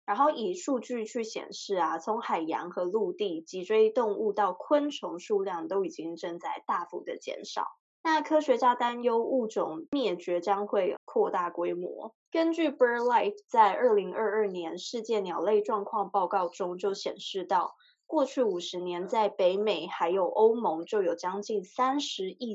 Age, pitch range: 20-39, 190-285 Hz